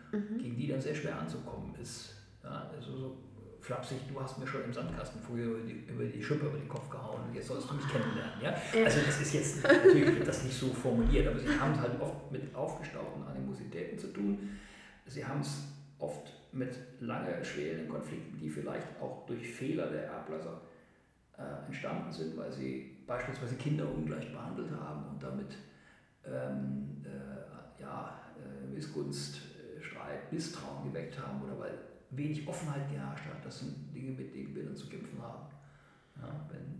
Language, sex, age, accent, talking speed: German, male, 50-69, German, 175 wpm